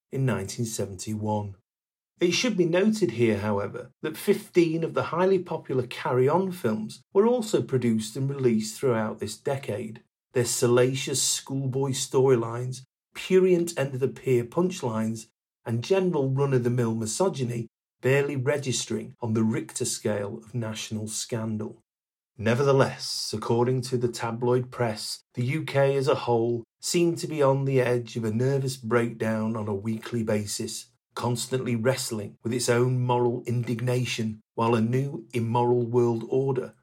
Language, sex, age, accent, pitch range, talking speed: English, male, 40-59, British, 115-135 Hz, 135 wpm